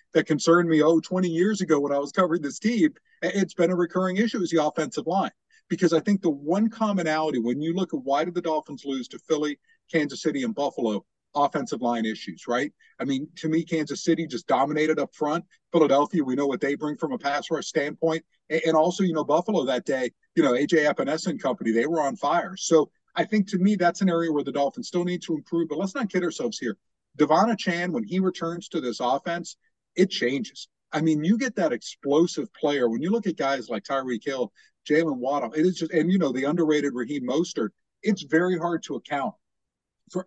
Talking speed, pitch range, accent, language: 220 wpm, 140-185 Hz, American, English